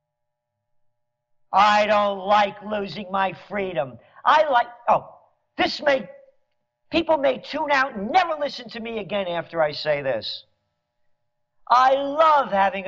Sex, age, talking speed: male, 50-69, 130 wpm